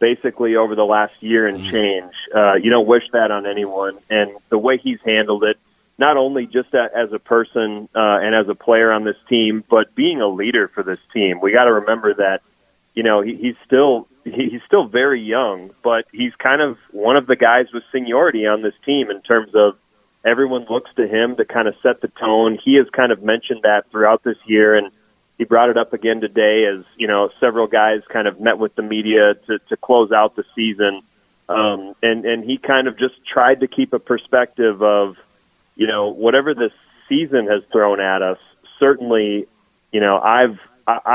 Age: 30-49